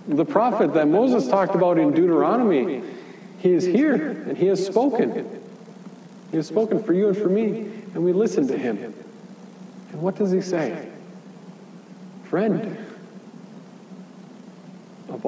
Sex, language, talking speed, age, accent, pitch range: male, English, 140 wpm, 50-69, American, 155-205 Hz